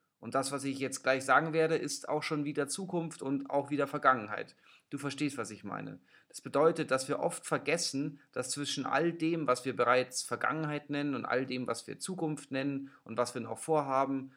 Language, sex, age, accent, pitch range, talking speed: German, male, 30-49, German, 125-150 Hz, 205 wpm